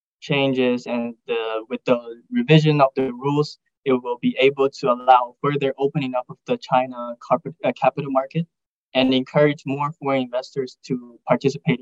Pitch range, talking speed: 125-155 Hz, 150 wpm